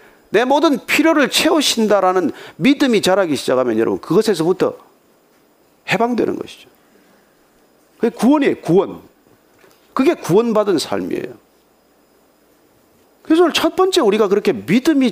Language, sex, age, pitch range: Korean, male, 40-59, 195-300 Hz